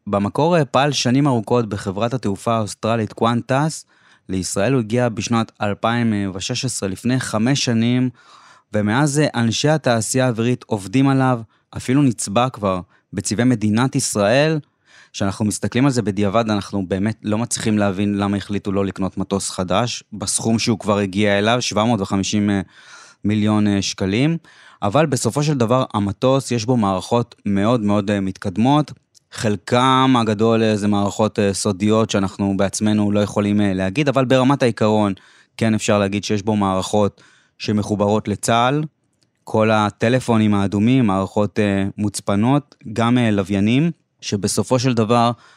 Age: 20-39